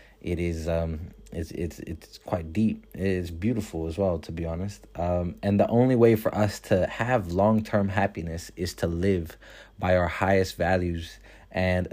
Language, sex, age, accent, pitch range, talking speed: English, male, 30-49, American, 85-105 Hz, 175 wpm